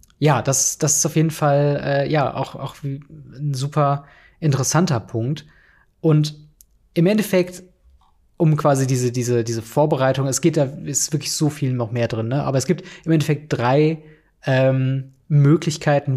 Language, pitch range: German, 125-155 Hz